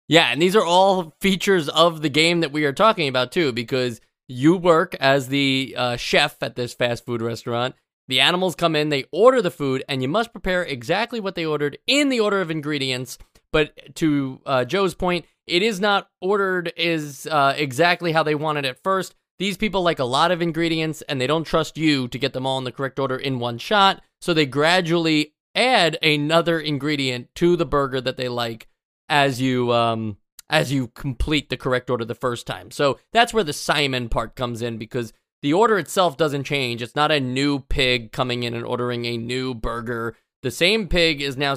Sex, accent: male, American